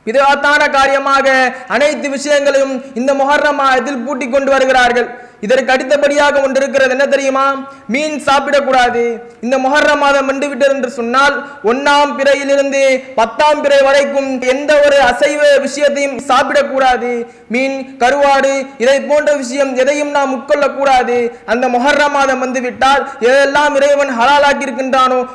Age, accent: 20-39, Indian